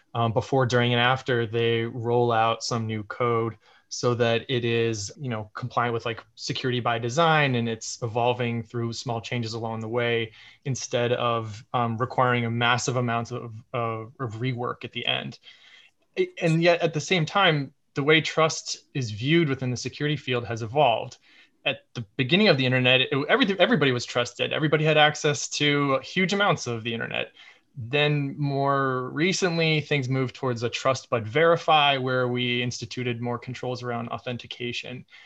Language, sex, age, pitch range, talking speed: English, male, 20-39, 120-150 Hz, 170 wpm